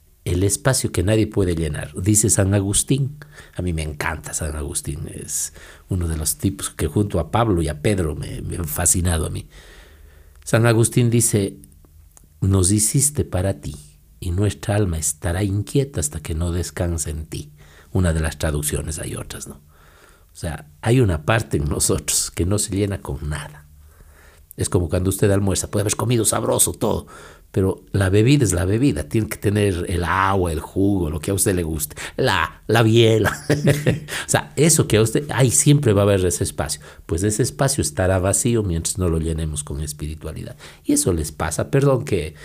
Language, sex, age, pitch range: Spanish, male, 60-79, 75-105 Hz